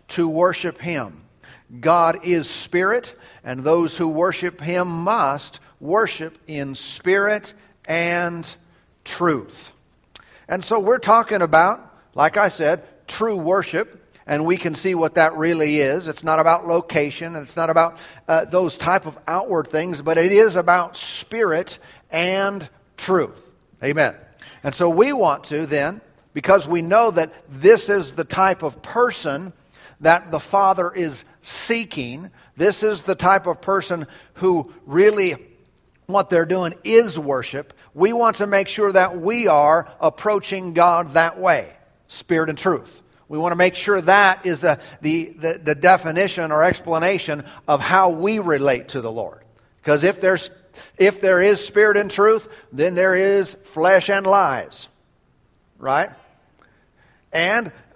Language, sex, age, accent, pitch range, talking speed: English, male, 50-69, American, 160-195 Hz, 150 wpm